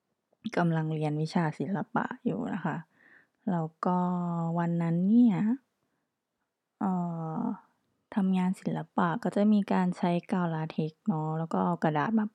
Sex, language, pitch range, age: female, Thai, 165-215 Hz, 20-39